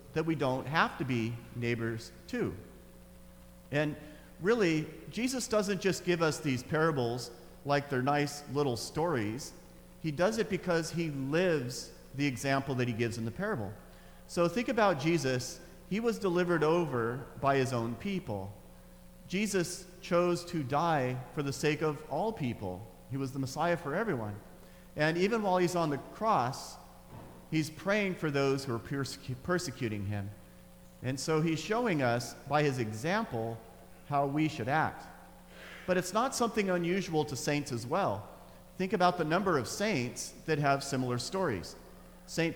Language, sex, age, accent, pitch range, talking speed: English, male, 40-59, American, 120-170 Hz, 155 wpm